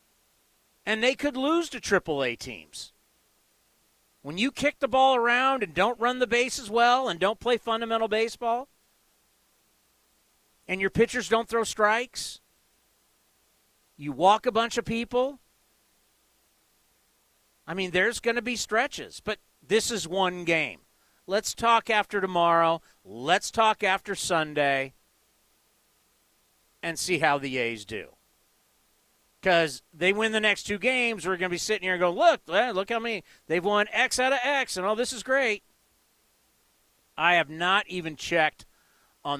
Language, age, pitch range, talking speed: English, 40-59, 155-230 Hz, 150 wpm